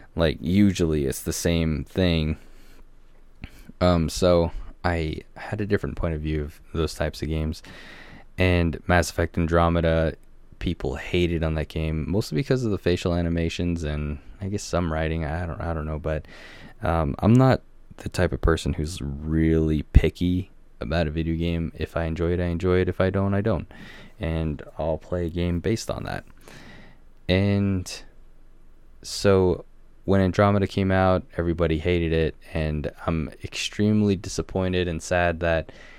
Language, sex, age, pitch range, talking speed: English, male, 20-39, 80-90 Hz, 160 wpm